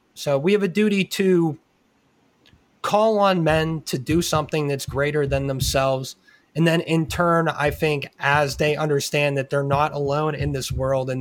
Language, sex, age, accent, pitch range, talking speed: English, male, 20-39, American, 135-155 Hz, 175 wpm